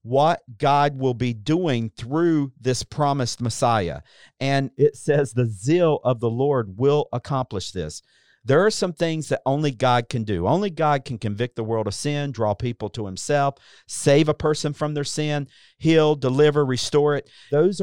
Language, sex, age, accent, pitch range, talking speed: English, male, 50-69, American, 115-150 Hz, 175 wpm